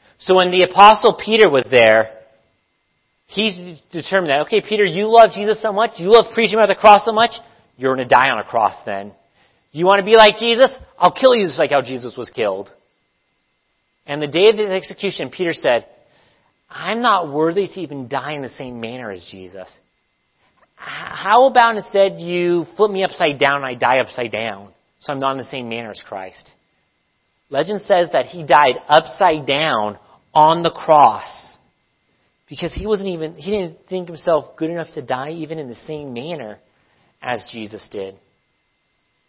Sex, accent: male, American